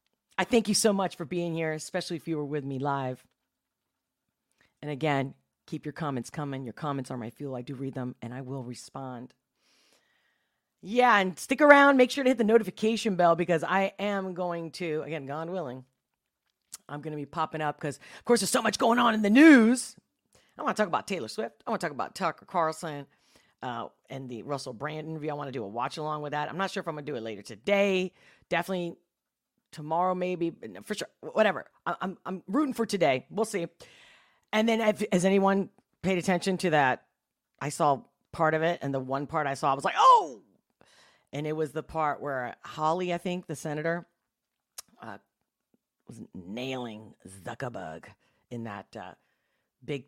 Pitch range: 135-195 Hz